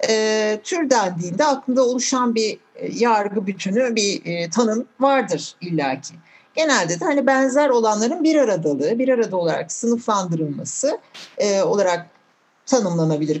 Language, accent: Turkish, native